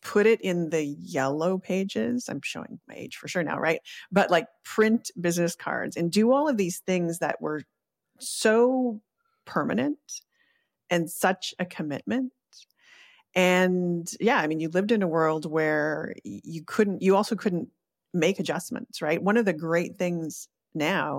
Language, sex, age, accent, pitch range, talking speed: English, female, 30-49, American, 155-215 Hz, 160 wpm